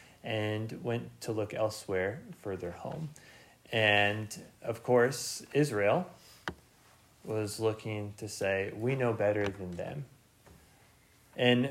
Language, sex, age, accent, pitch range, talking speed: English, male, 30-49, American, 105-130 Hz, 115 wpm